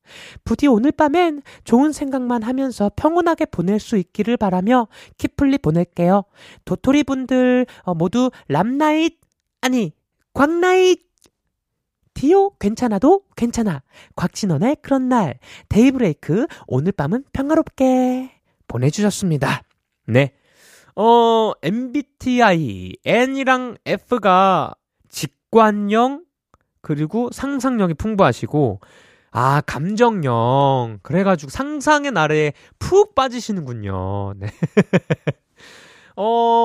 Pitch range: 160-260 Hz